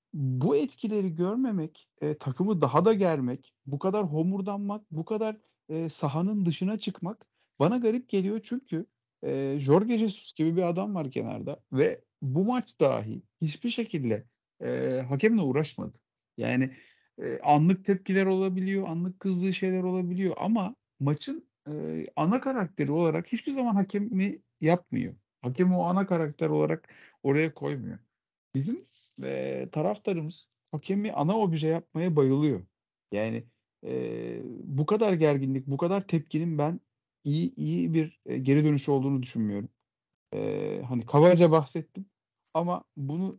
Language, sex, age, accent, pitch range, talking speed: Turkish, male, 50-69, native, 135-190 Hz, 130 wpm